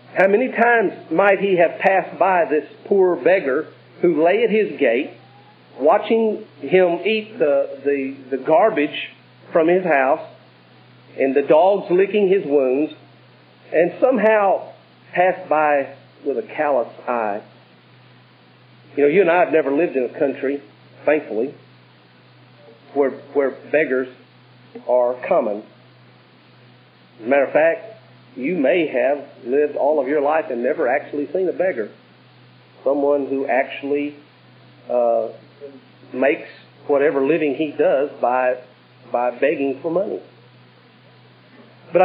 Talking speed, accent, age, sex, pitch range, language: 130 wpm, American, 50-69, male, 105-165 Hz, English